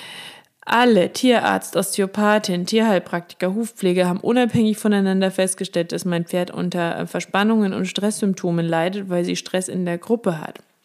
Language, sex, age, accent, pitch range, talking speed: German, female, 20-39, German, 180-220 Hz, 135 wpm